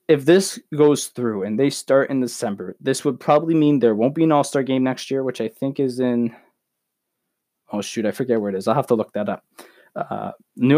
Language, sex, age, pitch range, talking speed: English, male, 20-39, 115-135 Hz, 225 wpm